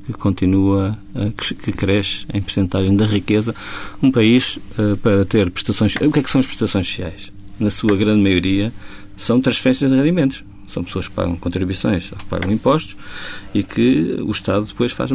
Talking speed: 175 wpm